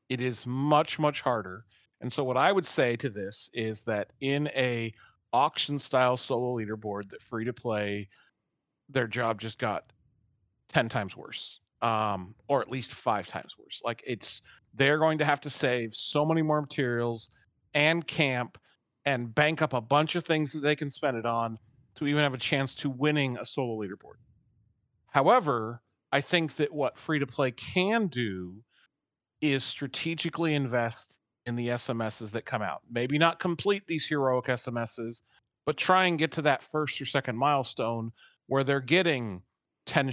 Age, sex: 40-59, male